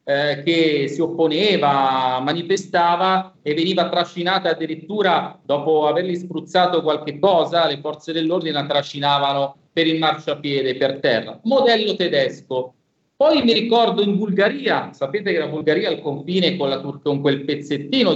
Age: 40-59